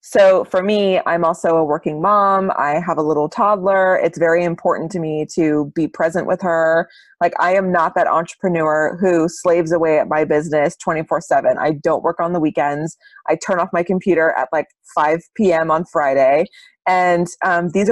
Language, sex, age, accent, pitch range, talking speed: English, female, 20-39, American, 160-190 Hz, 190 wpm